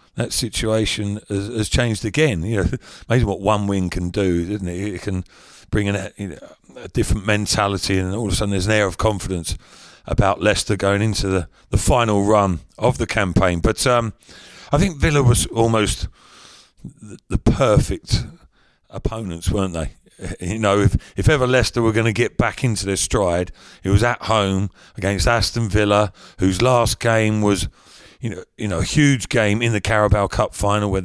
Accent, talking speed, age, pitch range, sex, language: British, 185 wpm, 40-59, 95-115 Hz, male, English